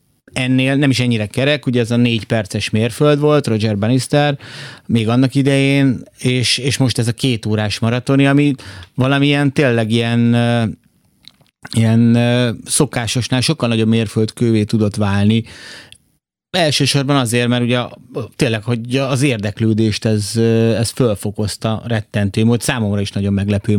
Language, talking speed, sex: Hungarian, 135 wpm, male